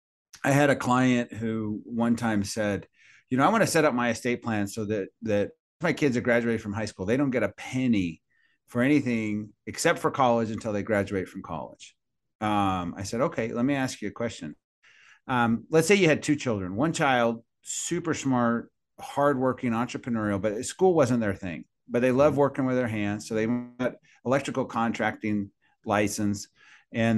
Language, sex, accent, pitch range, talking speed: English, male, American, 105-135 Hz, 190 wpm